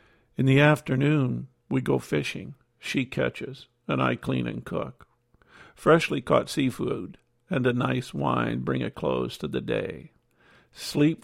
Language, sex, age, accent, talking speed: English, male, 50-69, American, 145 wpm